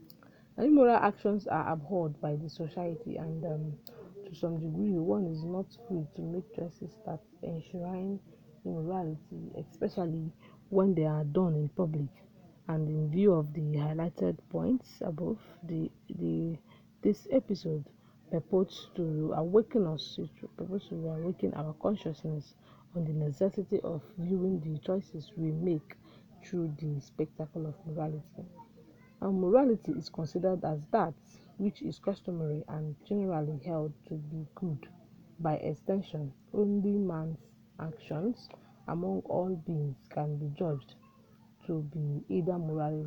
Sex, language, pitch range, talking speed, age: female, English, 155-190 Hz, 130 wpm, 40-59